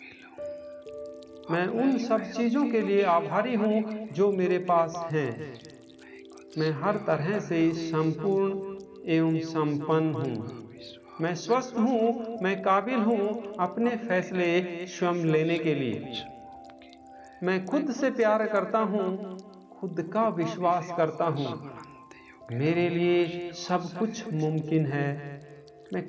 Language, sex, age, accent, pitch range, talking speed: Hindi, male, 50-69, native, 145-200 Hz, 115 wpm